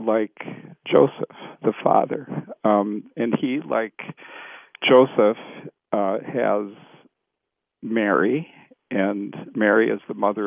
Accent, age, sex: American, 50-69, male